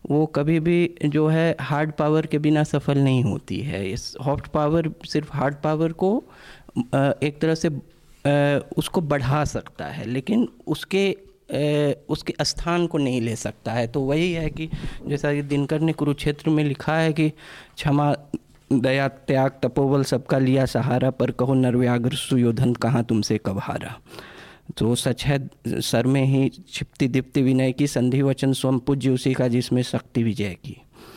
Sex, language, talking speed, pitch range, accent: male, Hindi, 160 wpm, 125-155 Hz, native